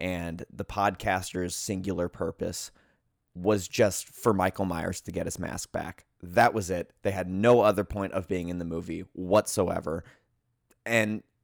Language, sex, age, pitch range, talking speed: English, male, 20-39, 95-110 Hz, 155 wpm